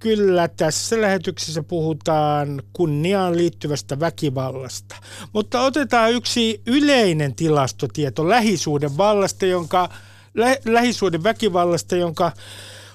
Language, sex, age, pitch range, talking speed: Finnish, male, 60-79, 145-205 Hz, 90 wpm